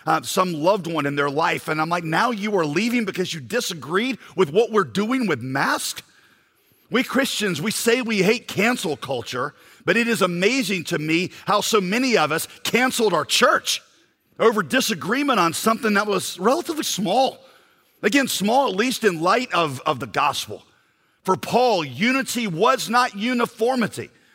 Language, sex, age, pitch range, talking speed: English, male, 50-69, 175-230 Hz, 170 wpm